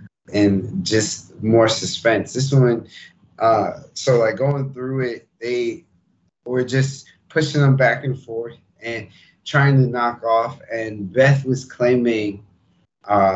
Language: English